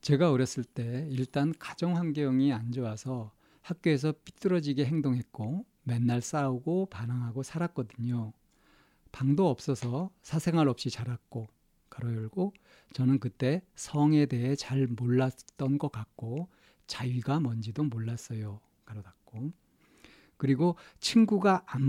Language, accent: Korean, native